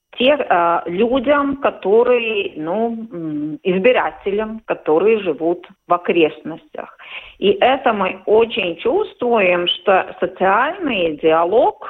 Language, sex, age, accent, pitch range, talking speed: Russian, female, 50-69, native, 175-270 Hz, 85 wpm